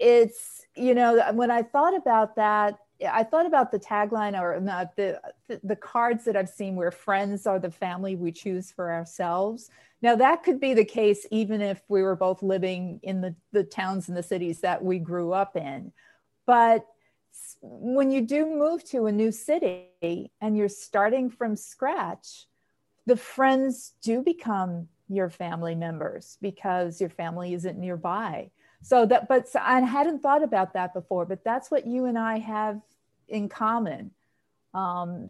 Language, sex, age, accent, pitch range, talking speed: English, female, 50-69, American, 185-230 Hz, 170 wpm